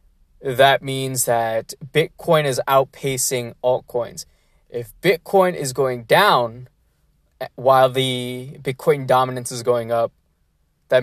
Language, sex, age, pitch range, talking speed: English, male, 20-39, 125-150 Hz, 110 wpm